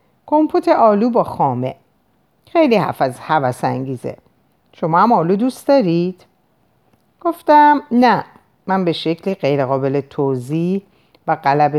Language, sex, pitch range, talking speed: Persian, female, 155-260 Hz, 115 wpm